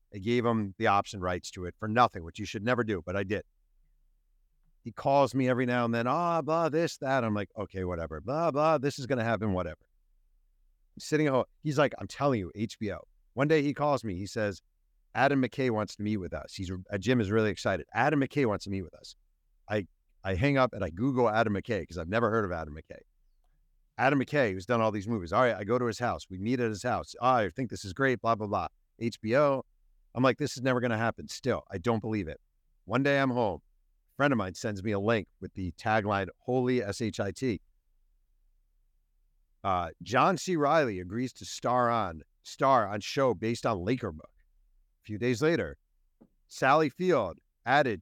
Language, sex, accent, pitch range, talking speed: English, male, American, 90-130 Hz, 215 wpm